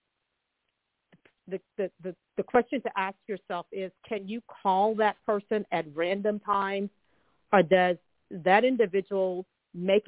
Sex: female